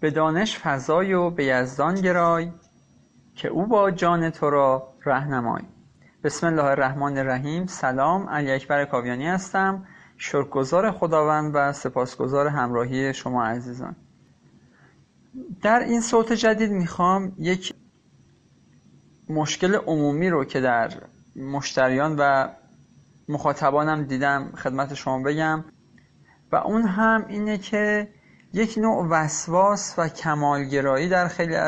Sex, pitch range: male, 140-180 Hz